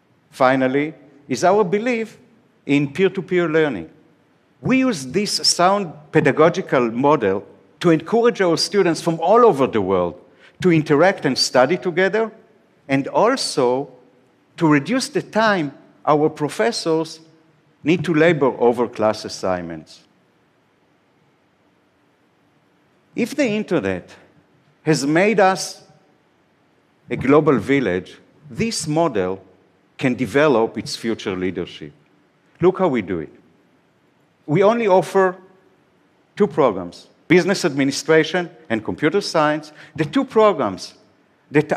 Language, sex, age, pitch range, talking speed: Portuguese, male, 60-79, 140-195 Hz, 110 wpm